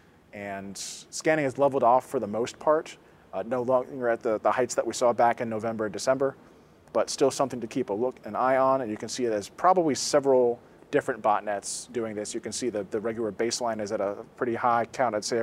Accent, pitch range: American, 115-140 Hz